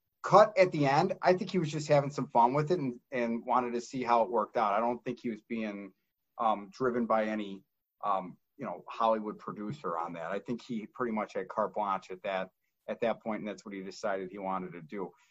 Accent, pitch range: American, 115-150 Hz